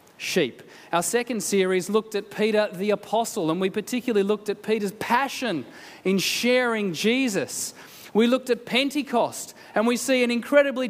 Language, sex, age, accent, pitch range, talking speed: English, male, 30-49, Australian, 200-245 Hz, 155 wpm